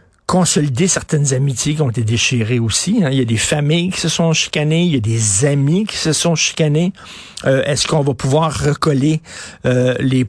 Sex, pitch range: male, 130-155 Hz